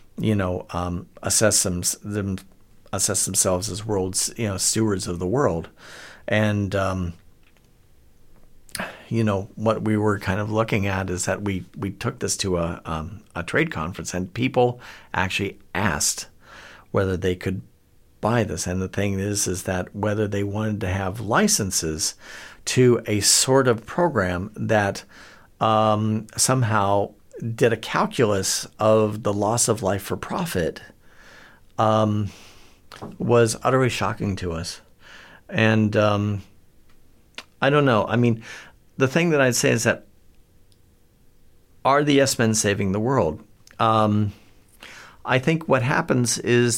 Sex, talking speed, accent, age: male, 140 wpm, American, 50-69